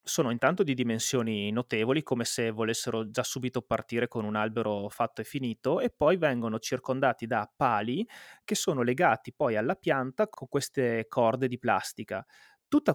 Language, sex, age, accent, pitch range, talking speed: Italian, male, 30-49, native, 115-140 Hz, 160 wpm